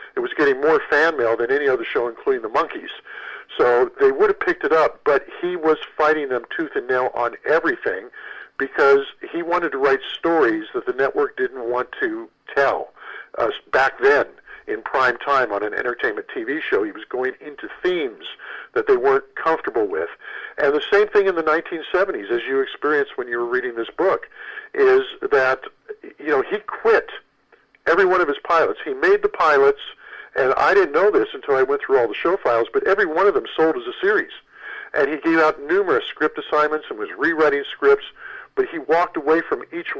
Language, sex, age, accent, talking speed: English, male, 50-69, American, 200 wpm